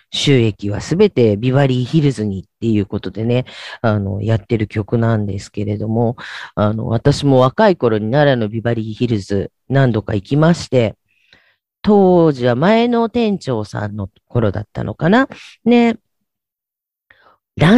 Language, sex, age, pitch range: Japanese, female, 40-59, 115-185 Hz